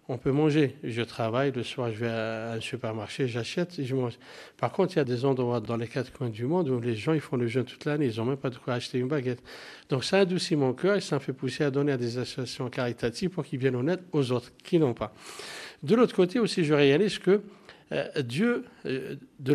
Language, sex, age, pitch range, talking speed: French, male, 60-79, 125-155 Hz, 250 wpm